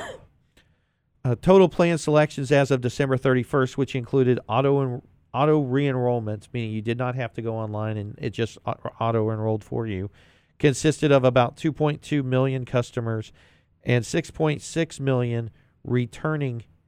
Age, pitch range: 40-59, 115-145 Hz